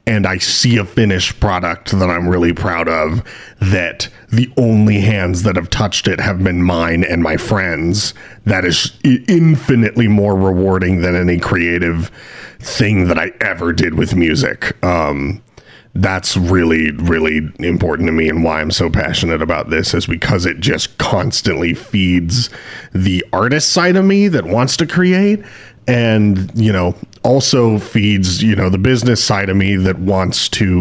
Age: 40-59